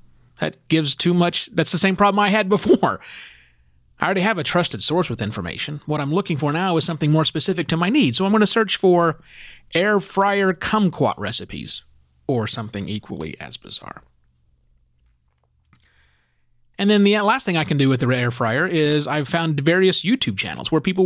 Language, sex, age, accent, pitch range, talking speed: English, male, 30-49, American, 120-185 Hz, 190 wpm